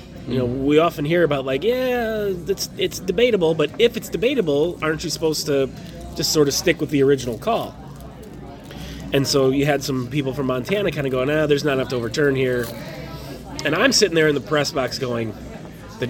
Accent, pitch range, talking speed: American, 130-165 Hz, 205 wpm